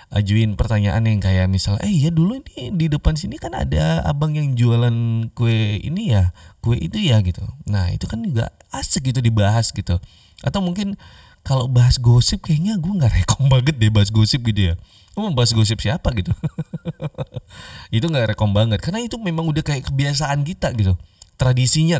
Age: 20-39